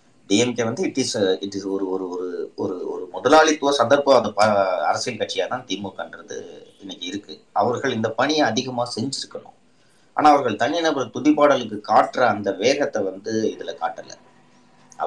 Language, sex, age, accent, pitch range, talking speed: Tamil, male, 30-49, native, 110-160 Hz, 90 wpm